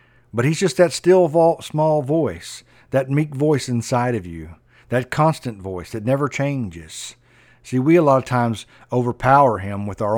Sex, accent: male, American